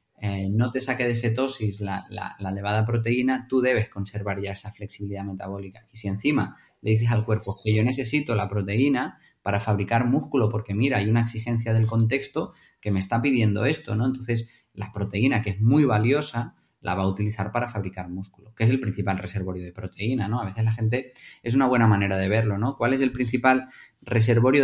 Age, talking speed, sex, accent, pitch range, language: 20-39, 205 wpm, male, Spanish, 100-120 Hz, Spanish